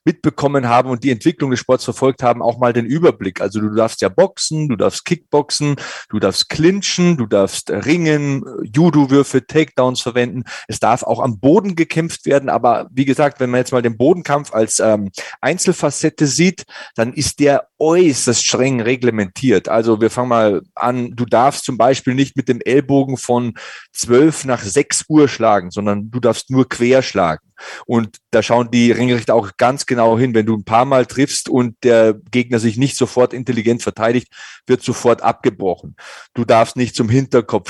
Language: German